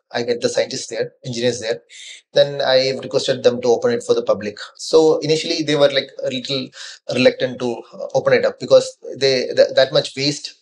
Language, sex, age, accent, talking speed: English, male, 30-49, Indian, 205 wpm